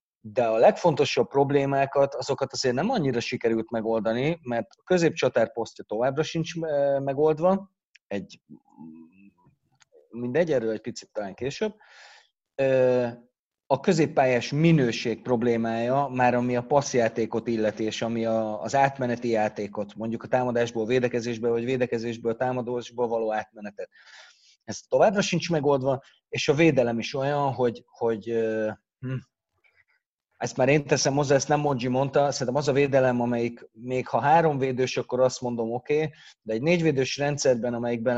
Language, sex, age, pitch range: Hungarian, male, 30-49, 115-140 Hz